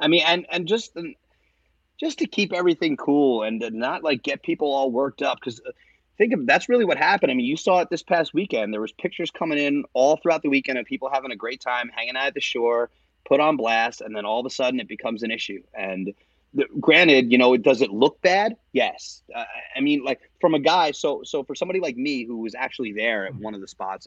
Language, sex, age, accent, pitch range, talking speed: English, male, 30-49, American, 110-155 Hz, 250 wpm